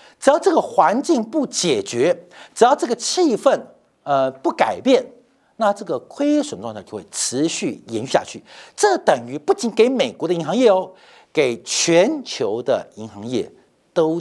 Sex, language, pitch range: male, Chinese, 185-310 Hz